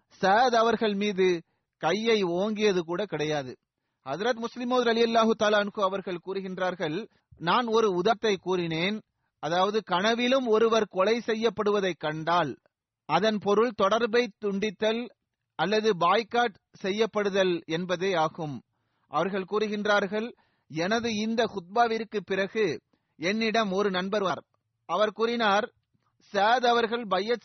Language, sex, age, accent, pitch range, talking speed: Tamil, male, 30-49, native, 180-225 Hz, 70 wpm